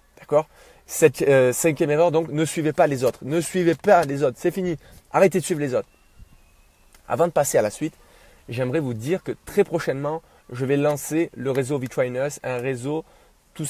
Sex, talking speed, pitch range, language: male, 185 wpm, 130-165 Hz, French